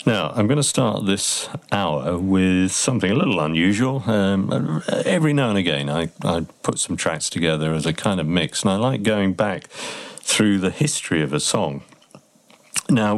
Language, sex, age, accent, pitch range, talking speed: English, male, 50-69, British, 85-110 Hz, 180 wpm